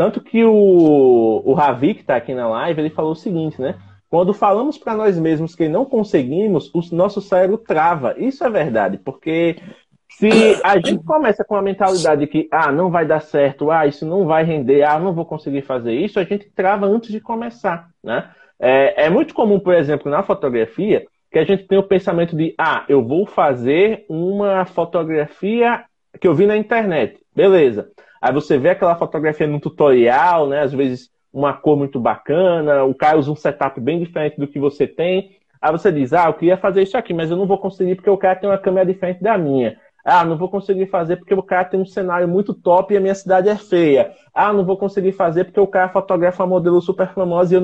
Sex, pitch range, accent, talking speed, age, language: male, 160-200 Hz, Brazilian, 215 wpm, 20-39, Portuguese